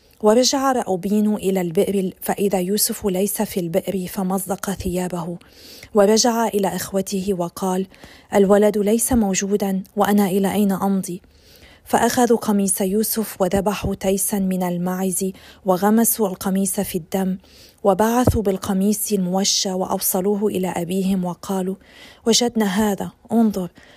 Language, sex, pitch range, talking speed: Arabic, female, 190-210 Hz, 110 wpm